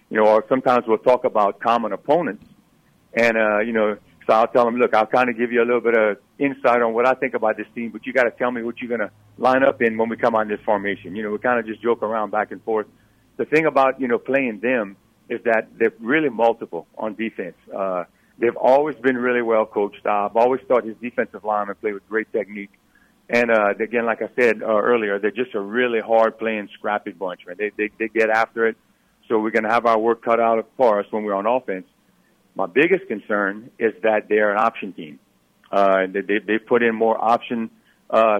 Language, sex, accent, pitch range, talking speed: English, male, American, 105-125 Hz, 240 wpm